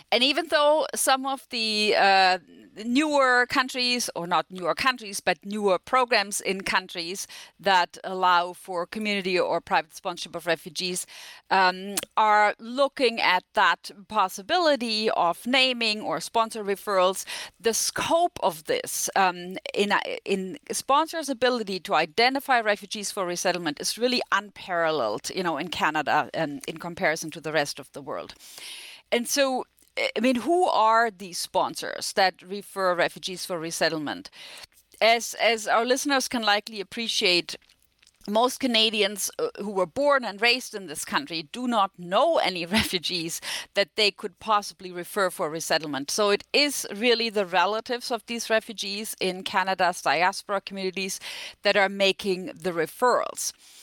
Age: 40-59